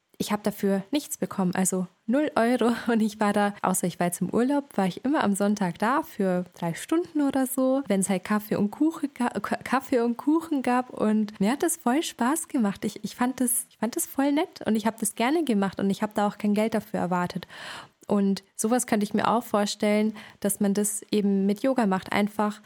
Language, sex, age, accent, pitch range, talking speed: German, female, 20-39, German, 195-245 Hz, 220 wpm